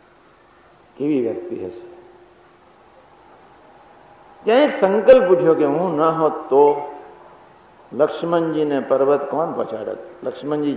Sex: male